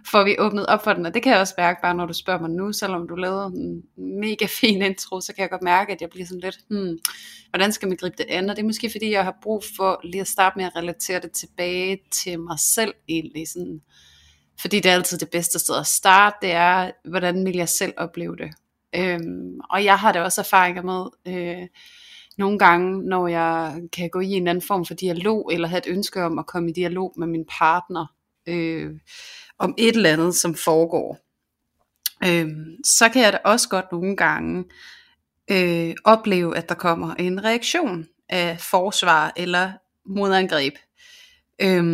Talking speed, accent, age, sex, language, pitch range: 200 wpm, native, 30-49, female, Danish, 170-200 Hz